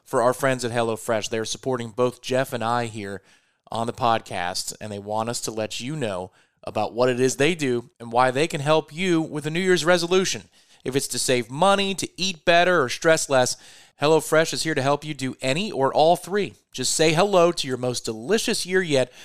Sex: male